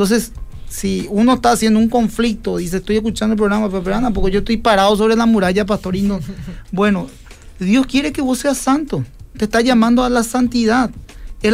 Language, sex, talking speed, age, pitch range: Spanish, male, 200 wpm, 40-59, 180-230 Hz